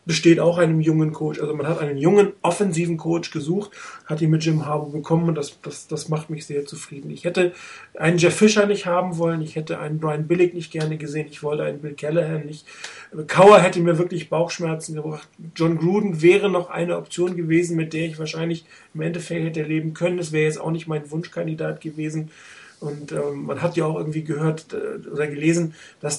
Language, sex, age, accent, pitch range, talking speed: German, male, 40-59, German, 155-175 Hz, 205 wpm